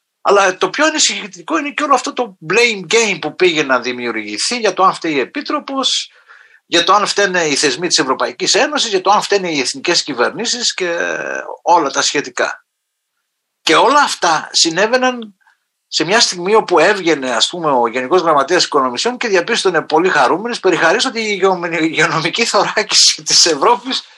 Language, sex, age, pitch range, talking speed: Greek, male, 50-69, 160-260 Hz, 160 wpm